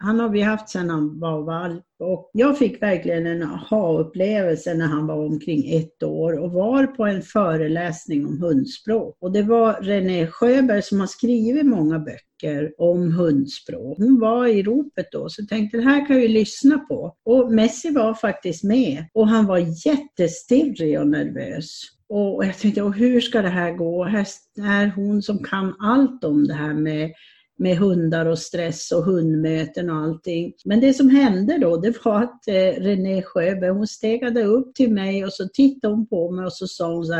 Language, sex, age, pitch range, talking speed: English, female, 50-69, 170-230 Hz, 190 wpm